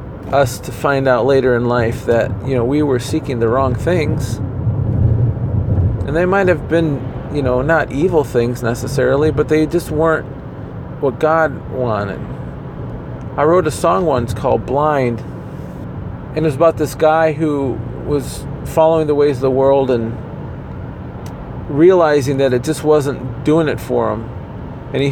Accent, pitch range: American, 120-145 Hz